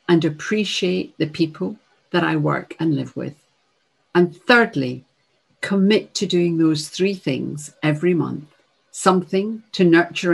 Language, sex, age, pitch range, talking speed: English, female, 50-69, 150-190 Hz, 135 wpm